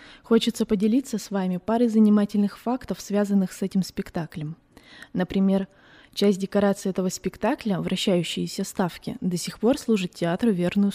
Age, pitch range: 20-39, 175-225 Hz